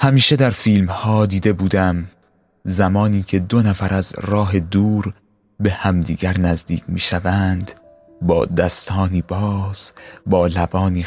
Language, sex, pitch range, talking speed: Persian, male, 90-100 Hz, 125 wpm